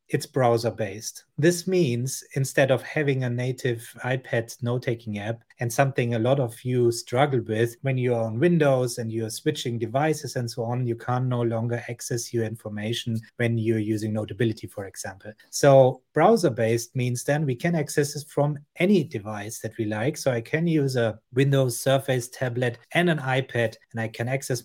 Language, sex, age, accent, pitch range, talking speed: English, male, 30-49, German, 115-140 Hz, 185 wpm